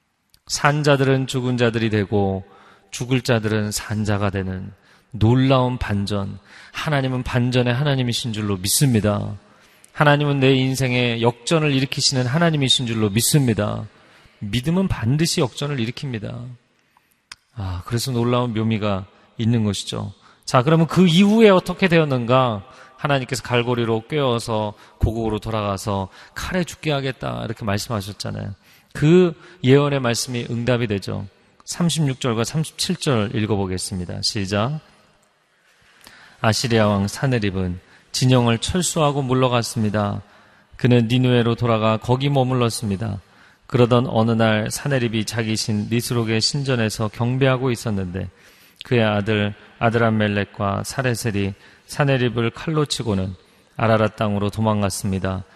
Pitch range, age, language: 105-130 Hz, 40-59, Korean